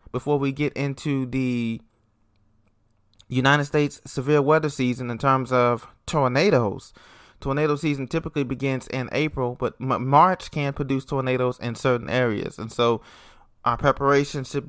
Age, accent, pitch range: 20-39, American, 120-145 Hz